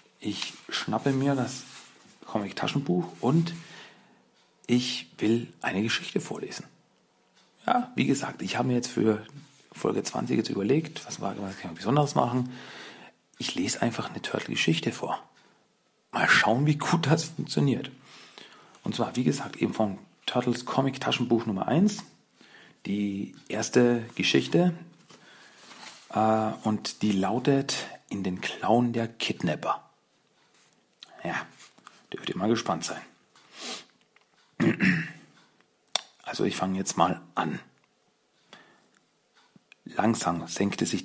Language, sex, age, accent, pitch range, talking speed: German, male, 40-59, German, 95-135 Hz, 110 wpm